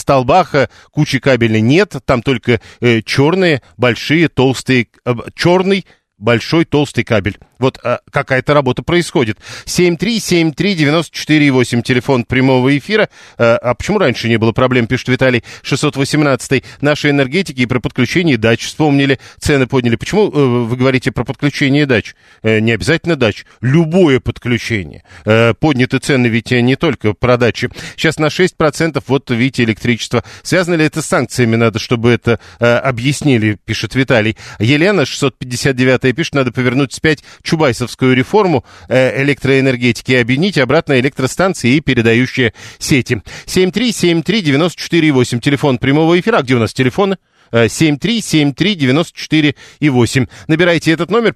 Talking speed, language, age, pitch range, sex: 130 wpm, Russian, 40-59, 120-155 Hz, male